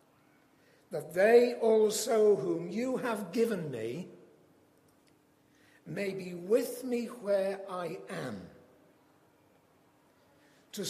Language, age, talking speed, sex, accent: English, 60-79, 90 wpm, male, British